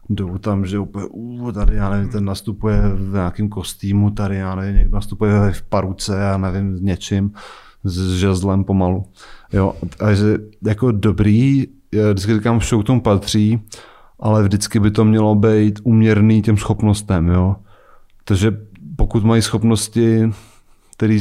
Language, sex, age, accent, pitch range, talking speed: Czech, male, 30-49, native, 100-110 Hz, 150 wpm